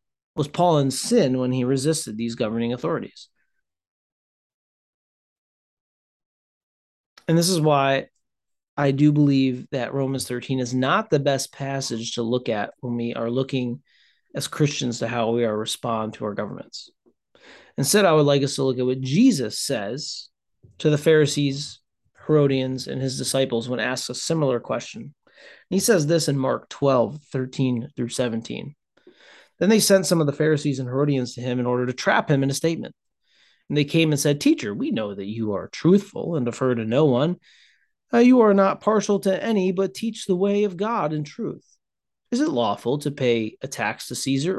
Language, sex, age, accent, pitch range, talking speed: English, male, 30-49, American, 125-170 Hz, 180 wpm